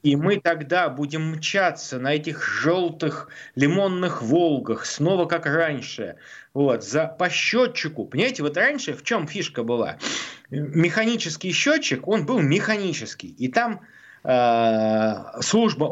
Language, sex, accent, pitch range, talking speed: Russian, male, native, 150-220 Hz, 115 wpm